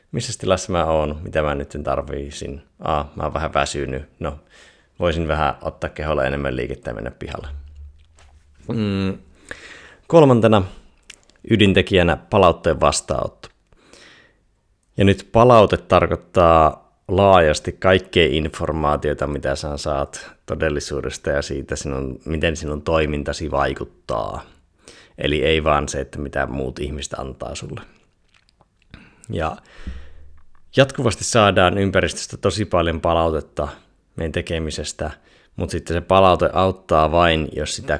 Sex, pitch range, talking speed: male, 75-90 Hz, 115 wpm